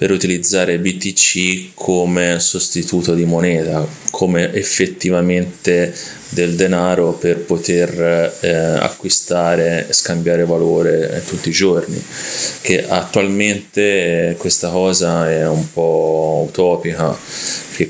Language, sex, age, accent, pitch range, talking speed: Italian, male, 20-39, native, 85-90 Hz, 100 wpm